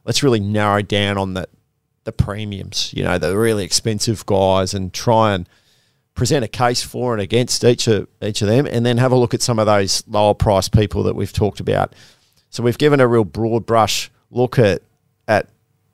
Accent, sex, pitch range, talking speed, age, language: Australian, male, 100-120 Hz, 205 wpm, 30-49, English